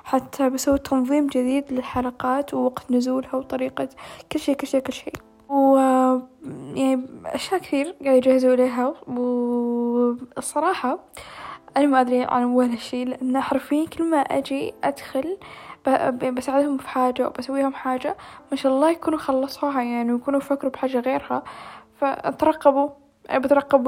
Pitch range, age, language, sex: 255-285 Hz, 10-29, Arabic, female